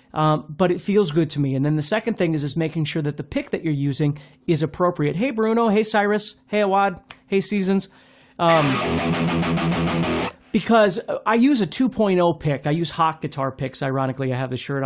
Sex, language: male, English